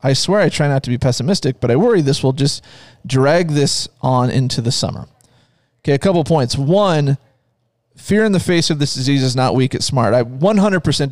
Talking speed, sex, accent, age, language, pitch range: 210 wpm, male, American, 30-49, English, 120-155 Hz